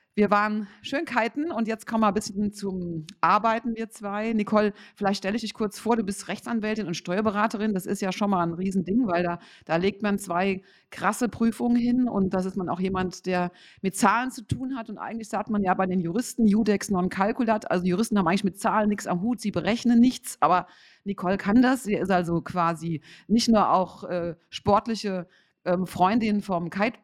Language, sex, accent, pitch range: German, female, German, 175-215 Hz